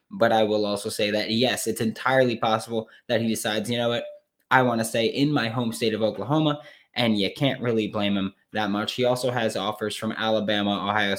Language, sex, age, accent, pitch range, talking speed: English, male, 20-39, American, 110-135 Hz, 220 wpm